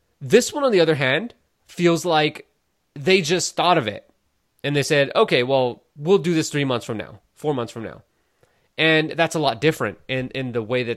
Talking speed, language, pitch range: 215 wpm, English, 120-155 Hz